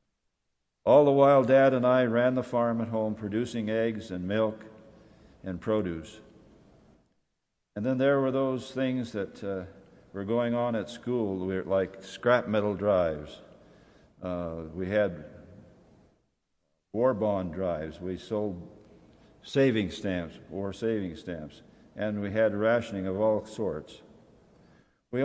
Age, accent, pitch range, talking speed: 60-79, American, 95-110 Hz, 130 wpm